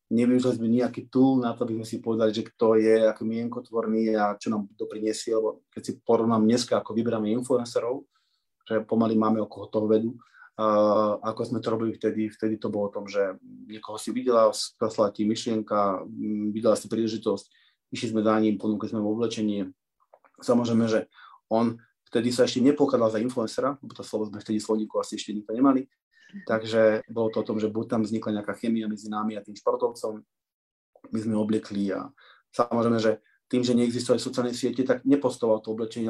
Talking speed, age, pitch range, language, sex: 185 wpm, 20-39, 110-120 Hz, Slovak, male